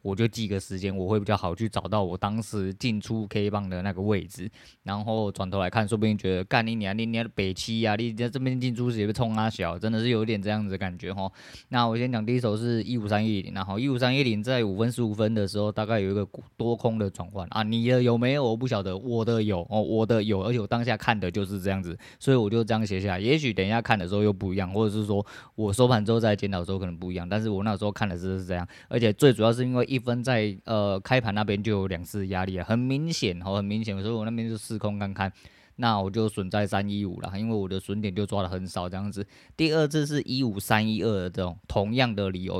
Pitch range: 100-115 Hz